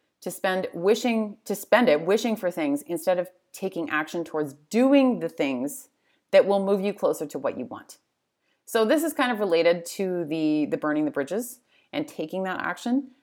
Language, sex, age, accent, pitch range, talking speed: English, female, 30-49, American, 165-210 Hz, 190 wpm